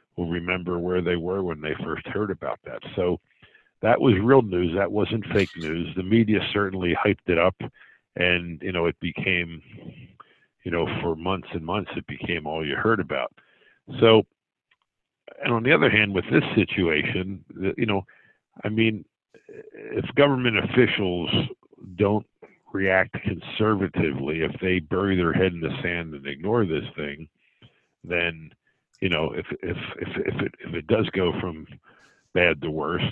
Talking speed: 160 wpm